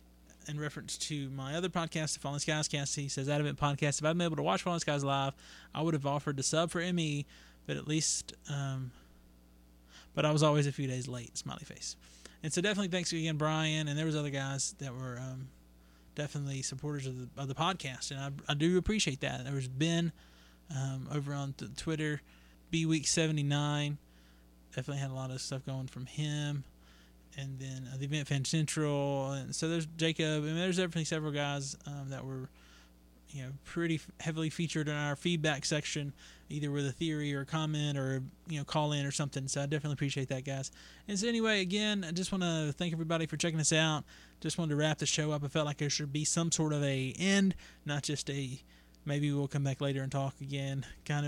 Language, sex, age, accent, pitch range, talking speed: English, male, 20-39, American, 135-160 Hz, 220 wpm